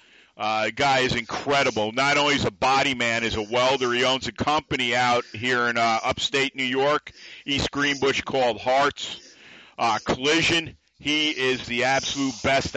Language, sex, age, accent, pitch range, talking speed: English, male, 50-69, American, 130-155 Hz, 170 wpm